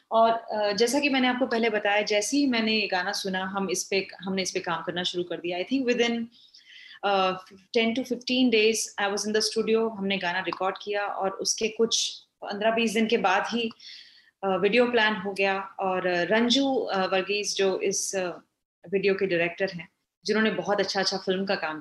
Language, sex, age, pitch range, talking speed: Punjabi, female, 30-49, 195-270 Hz, 205 wpm